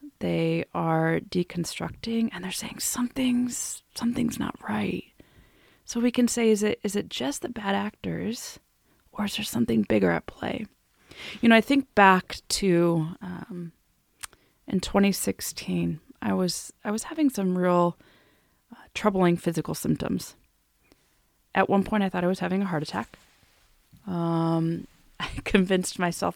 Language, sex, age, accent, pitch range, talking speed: English, female, 20-39, American, 170-220 Hz, 150 wpm